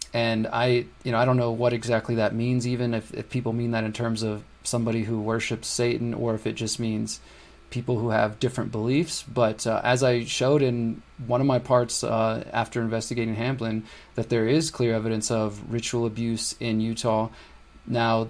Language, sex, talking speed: English, male, 195 wpm